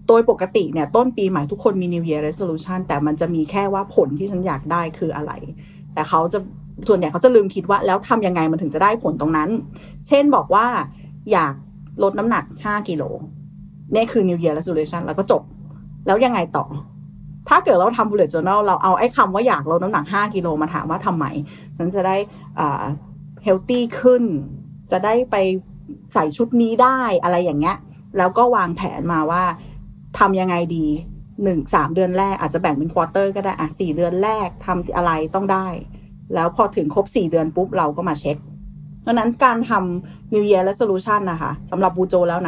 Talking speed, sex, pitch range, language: 35 wpm, female, 160-210 Hz, English